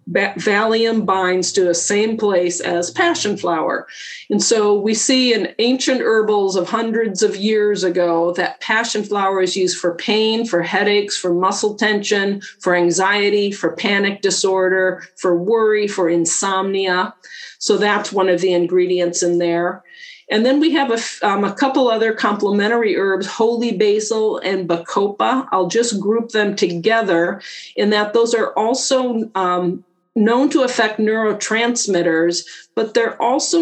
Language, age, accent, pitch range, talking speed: English, 50-69, American, 185-225 Hz, 145 wpm